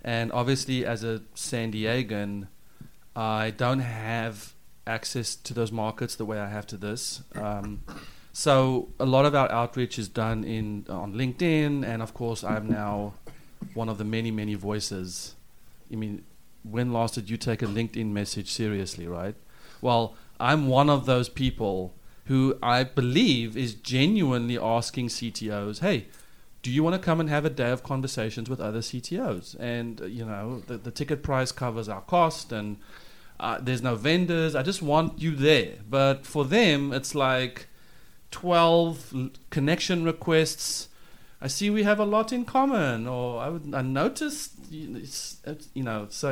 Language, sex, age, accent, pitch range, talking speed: English, male, 30-49, South African, 110-145 Hz, 165 wpm